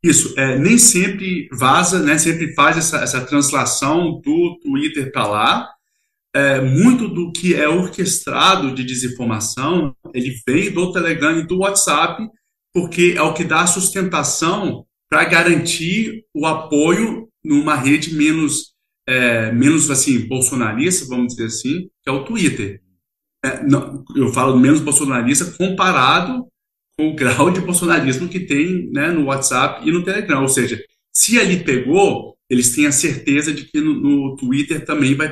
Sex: male